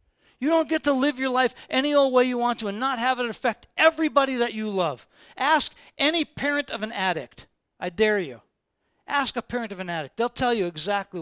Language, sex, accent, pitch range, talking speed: English, male, American, 210-280 Hz, 220 wpm